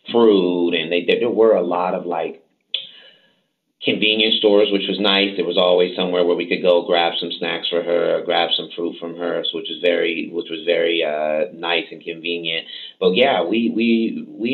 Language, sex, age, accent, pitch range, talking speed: English, male, 30-49, American, 85-110 Hz, 200 wpm